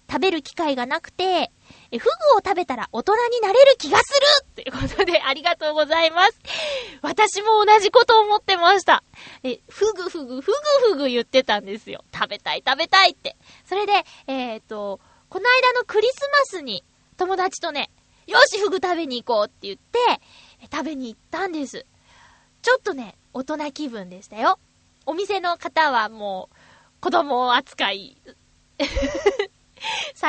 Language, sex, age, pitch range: Japanese, female, 20-39, 255-380 Hz